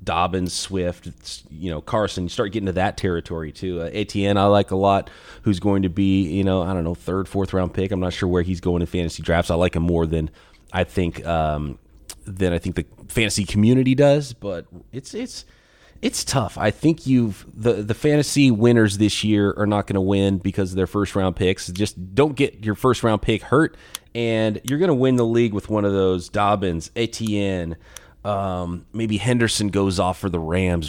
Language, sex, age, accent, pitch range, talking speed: English, male, 30-49, American, 85-105 Hz, 210 wpm